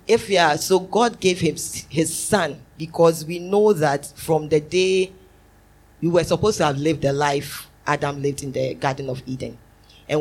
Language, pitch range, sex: English, 140-175 Hz, female